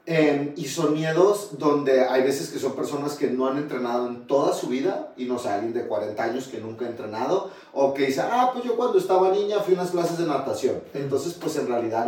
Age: 40-59